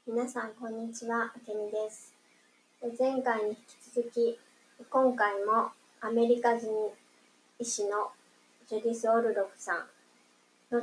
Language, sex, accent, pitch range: Japanese, male, native, 195-235 Hz